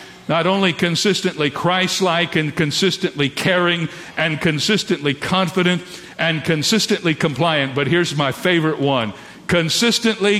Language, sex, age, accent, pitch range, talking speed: English, male, 50-69, American, 150-195 Hz, 110 wpm